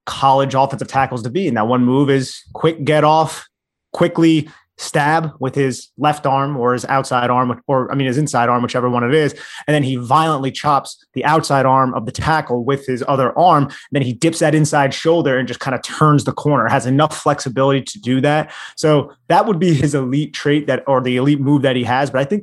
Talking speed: 230 wpm